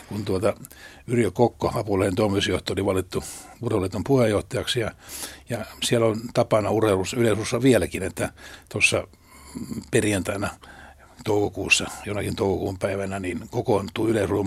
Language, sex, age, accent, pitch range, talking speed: Finnish, male, 60-79, native, 95-115 Hz, 110 wpm